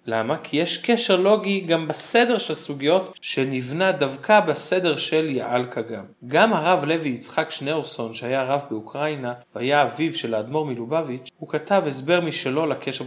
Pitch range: 135-190 Hz